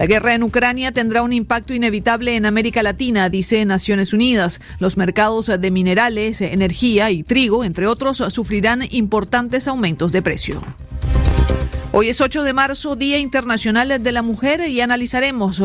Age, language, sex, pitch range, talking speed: 40-59, Spanish, female, 190-245 Hz, 155 wpm